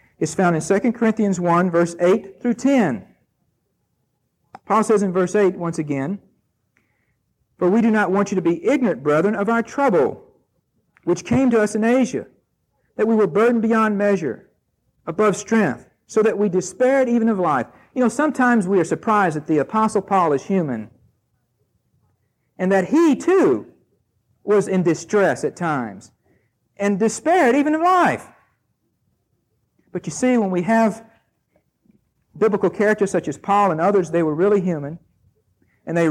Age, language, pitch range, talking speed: 50-69, English, 150-225 Hz, 160 wpm